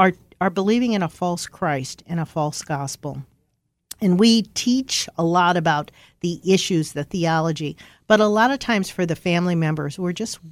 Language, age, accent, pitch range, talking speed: English, 50-69, American, 155-205 Hz, 175 wpm